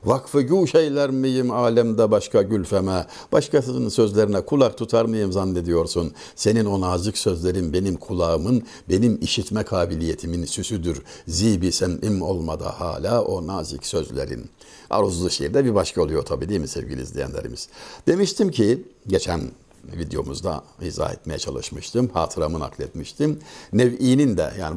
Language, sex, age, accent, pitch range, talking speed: Turkish, male, 60-79, native, 95-140 Hz, 125 wpm